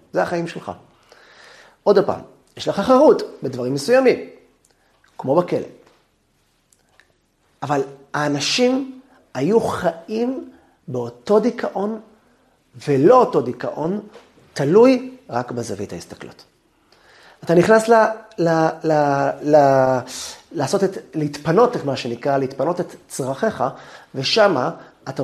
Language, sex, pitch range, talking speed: Hebrew, male, 130-205 Hz, 100 wpm